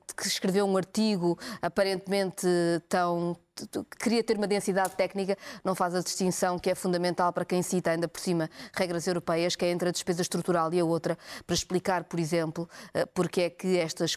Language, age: Portuguese, 20-39